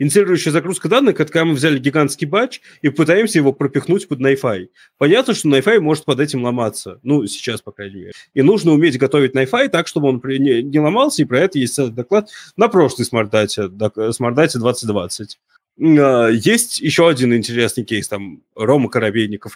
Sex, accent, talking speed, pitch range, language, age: male, native, 165 wpm, 115-160 Hz, Russian, 20-39